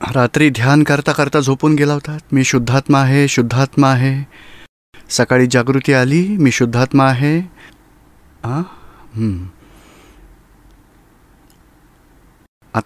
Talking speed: 70 wpm